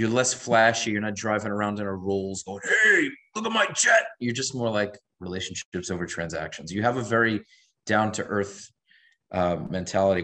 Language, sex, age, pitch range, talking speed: English, male, 30-49, 95-110 Hz, 170 wpm